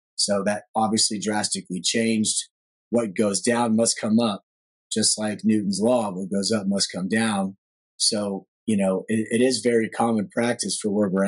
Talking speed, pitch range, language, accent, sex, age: 175 wpm, 100-120 Hz, English, American, male, 30-49